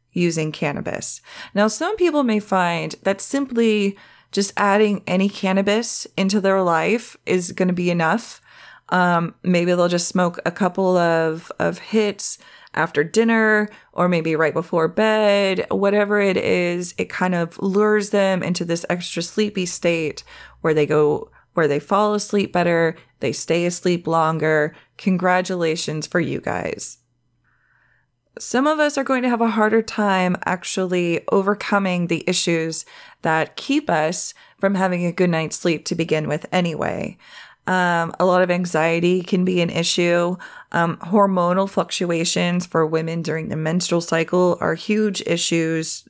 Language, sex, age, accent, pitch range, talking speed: English, female, 20-39, American, 165-205 Hz, 150 wpm